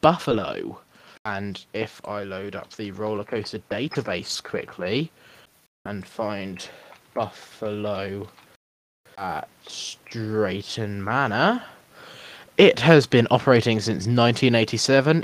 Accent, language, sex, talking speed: British, English, male, 90 wpm